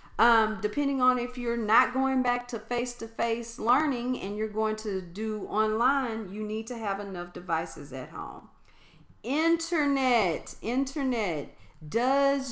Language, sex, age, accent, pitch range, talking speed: English, female, 40-59, American, 180-250 Hz, 145 wpm